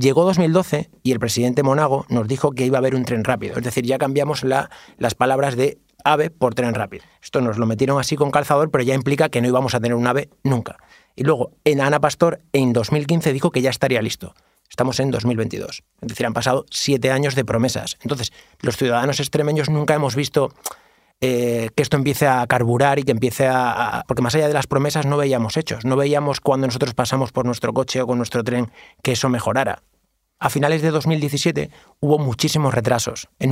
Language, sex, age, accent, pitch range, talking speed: Spanish, male, 30-49, Spanish, 125-145 Hz, 210 wpm